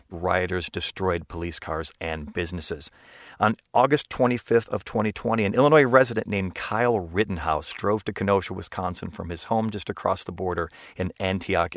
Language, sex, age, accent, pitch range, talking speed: English, male, 40-59, American, 90-115 Hz, 155 wpm